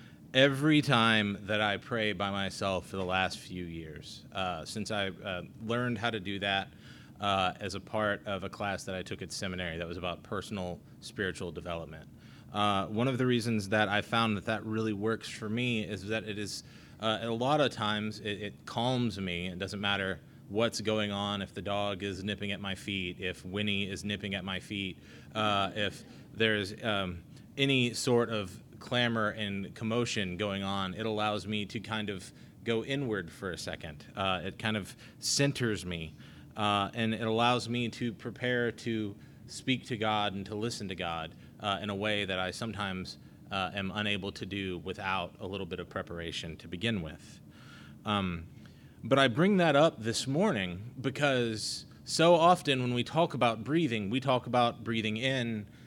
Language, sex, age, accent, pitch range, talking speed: English, male, 30-49, American, 95-115 Hz, 185 wpm